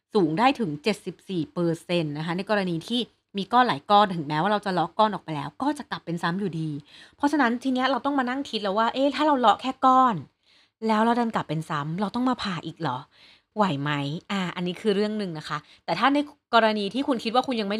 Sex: female